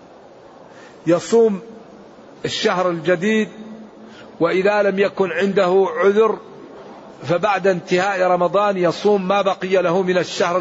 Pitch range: 165-195 Hz